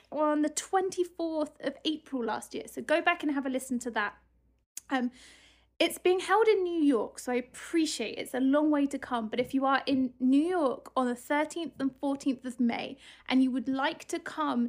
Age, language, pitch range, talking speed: 30-49, English, 245-315 Hz, 215 wpm